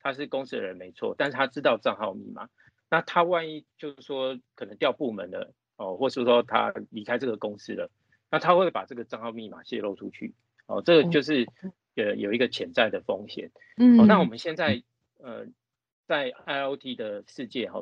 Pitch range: 115-175 Hz